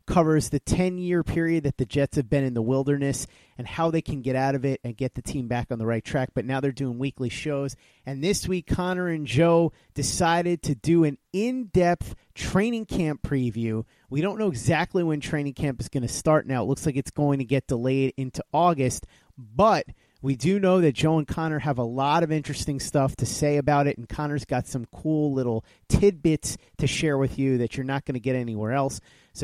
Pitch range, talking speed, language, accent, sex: 130-165 Hz, 225 wpm, English, American, male